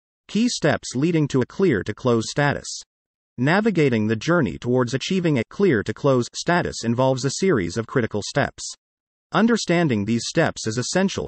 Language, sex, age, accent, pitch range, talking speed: English, male, 40-59, American, 115-170 Hz, 140 wpm